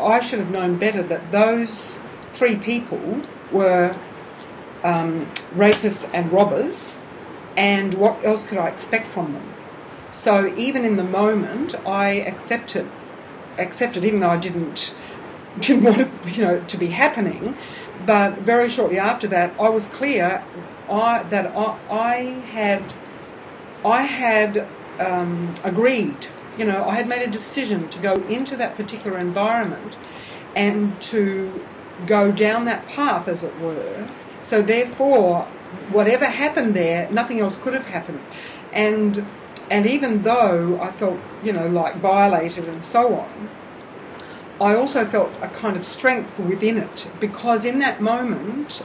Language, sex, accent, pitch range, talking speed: English, female, Australian, 185-230 Hz, 145 wpm